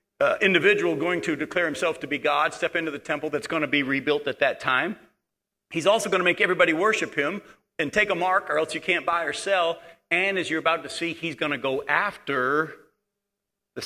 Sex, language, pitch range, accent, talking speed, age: male, English, 150-185 Hz, American, 225 wpm, 50-69